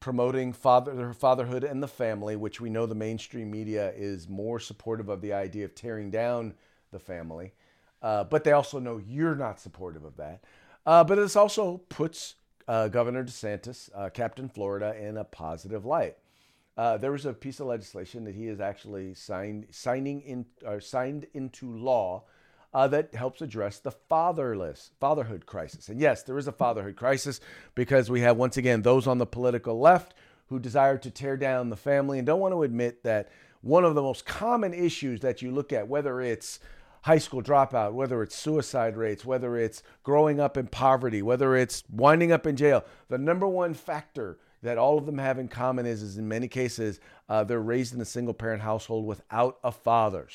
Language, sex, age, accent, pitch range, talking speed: English, male, 40-59, American, 110-135 Hz, 190 wpm